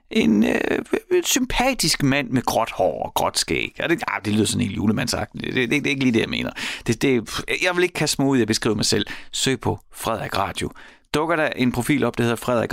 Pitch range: 105-135 Hz